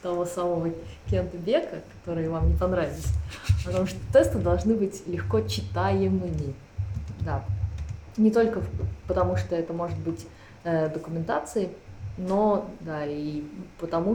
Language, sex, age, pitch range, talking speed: Russian, female, 20-39, 155-195 Hz, 120 wpm